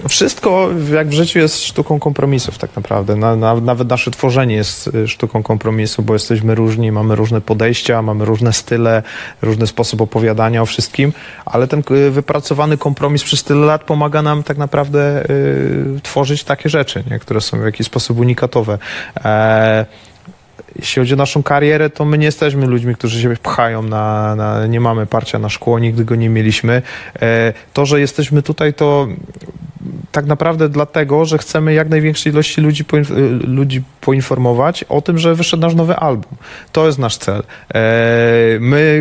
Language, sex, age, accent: Polish, male, 30-49, native